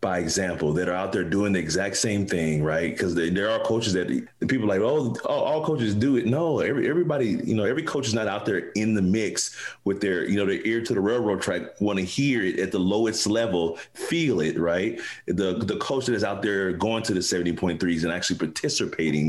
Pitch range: 85-115 Hz